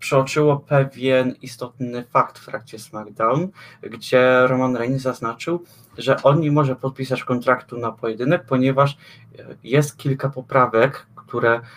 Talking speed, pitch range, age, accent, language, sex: 120 wpm, 115-135 Hz, 20-39, native, Polish, male